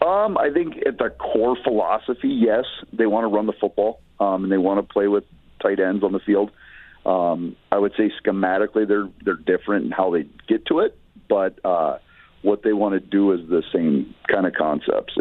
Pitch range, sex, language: 85-105 Hz, male, English